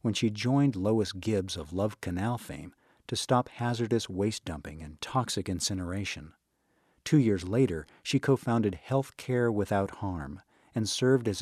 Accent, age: American, 50-69